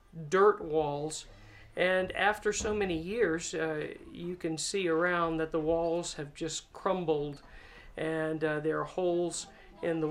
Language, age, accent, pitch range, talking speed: English, 50-69, American, 155-195 Hz, 150 wpm